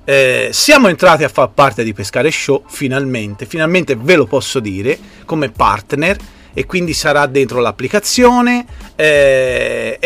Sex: male